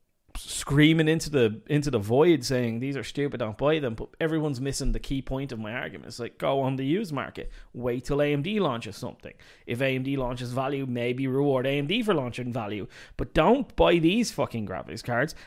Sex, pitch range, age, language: male, 120-150 Hz, 30-49, English